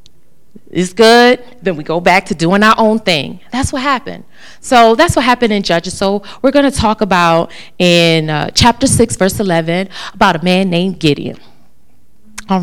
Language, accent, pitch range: English, American, 165-220 Hz